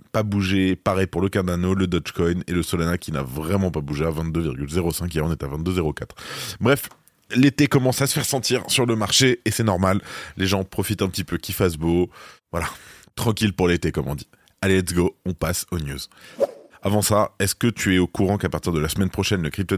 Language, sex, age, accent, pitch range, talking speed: French, male, 20-39, French, 85-100 Hz, 230 wpm